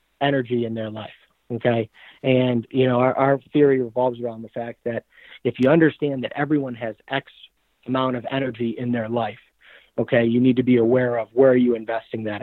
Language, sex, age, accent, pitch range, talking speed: English, male, 40-59, American, 120-135 Hz, 200 wpm